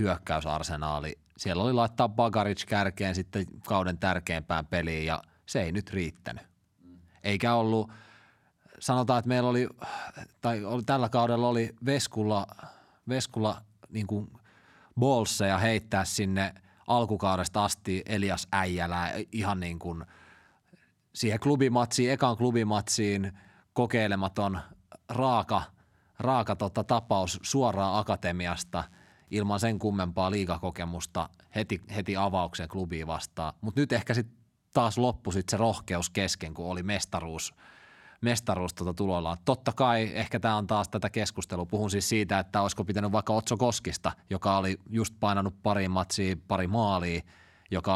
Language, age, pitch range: Finnish, 30-49, 90-110 Hz